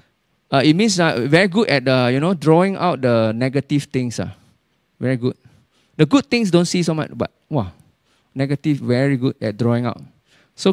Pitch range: 125-180 Hz